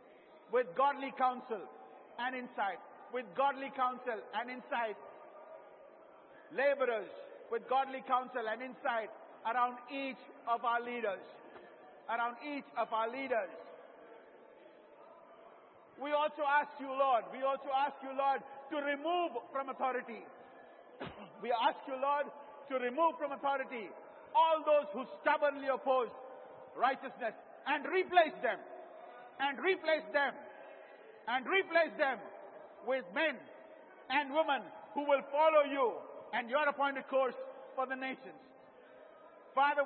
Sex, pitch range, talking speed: male, 255-295 Hz, 120 wpm